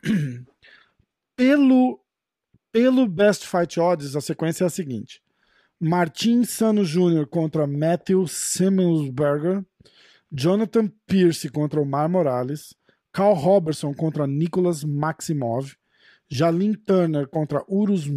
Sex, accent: male, Brazilian